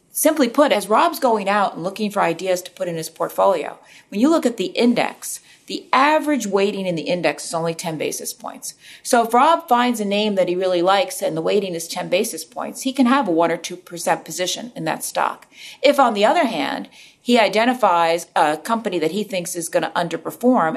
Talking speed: 220 wpm